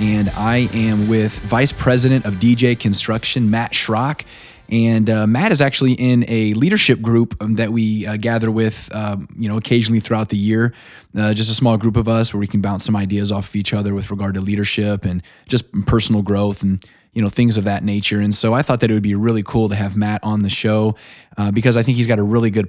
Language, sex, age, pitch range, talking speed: English, male, 20-39, 105-120 Hz, 235 wpm